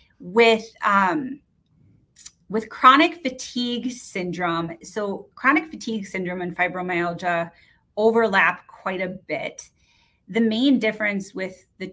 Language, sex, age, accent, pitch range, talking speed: English, female, 30-49, American, 170-205 Hz, 105 wpm